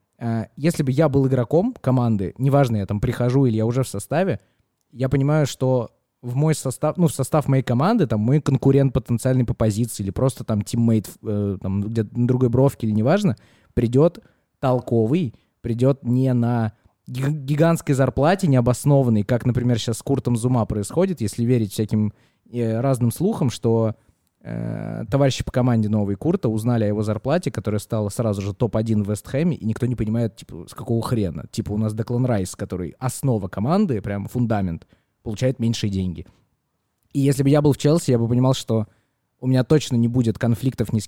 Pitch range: 110-135 Hz